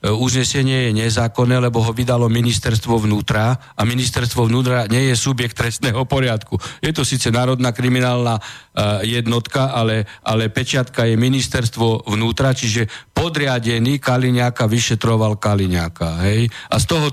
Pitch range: 115-145 Hz